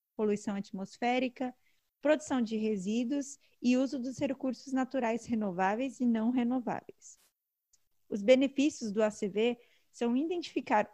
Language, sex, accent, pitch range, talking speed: Portuguese, female, Brazilian, 220-275 Hz, 110 wpm